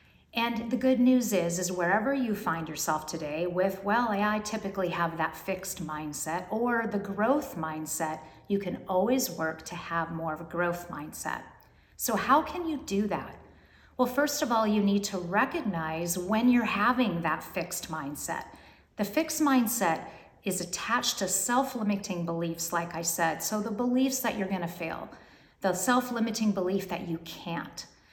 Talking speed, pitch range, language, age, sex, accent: 170 wpm, 175-230 Hz, English, 40-59, female, American